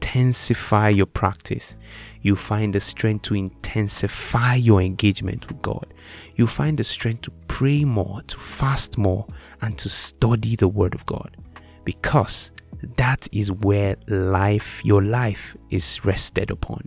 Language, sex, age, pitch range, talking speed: English, male, 30-49, 95-115 Hz, 140 wpm